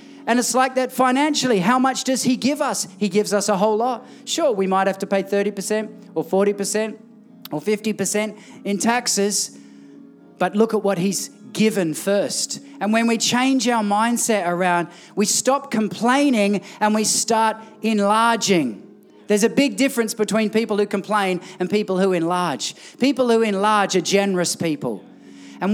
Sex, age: male, 40-59